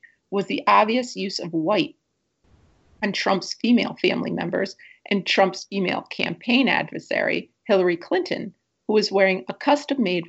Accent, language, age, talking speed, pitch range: American, English, 40-59, 135 wpm, 180-250 Hz